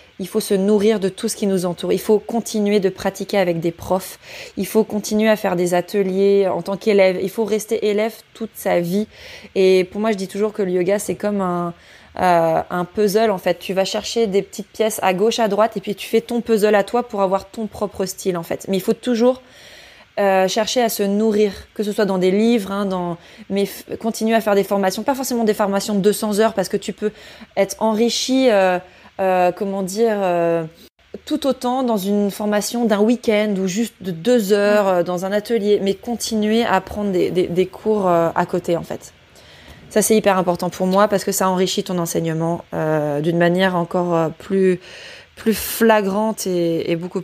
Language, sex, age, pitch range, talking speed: French, female, 20-39, 185-220 Hz, 215 wpm